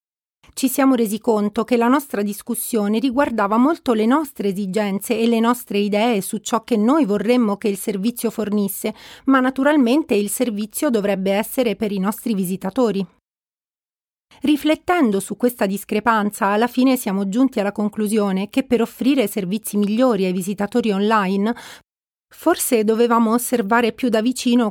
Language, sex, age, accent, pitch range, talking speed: Italian, female, 30-49, native, 205-245 Hz, 145 wpm